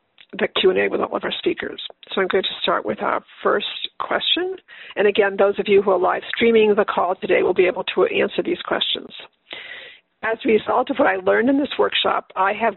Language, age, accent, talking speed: English, 50-69, American, 220 wpm